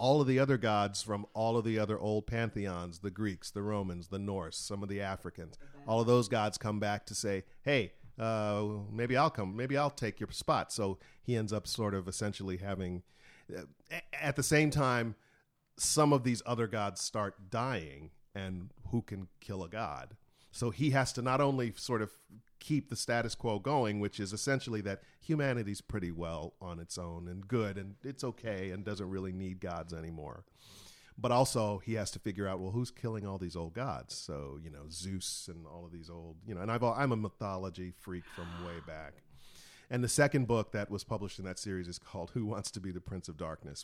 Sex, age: male, 40-59